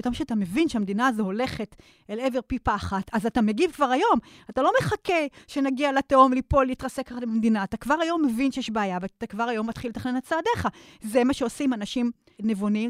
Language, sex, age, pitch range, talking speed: Hebrew, female, 30-49, 225-305 Hz, 190 wpm